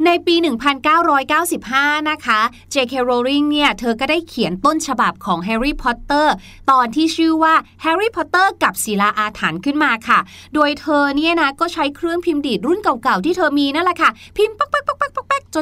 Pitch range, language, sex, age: 230-315 Hz, Thai, female, 20-39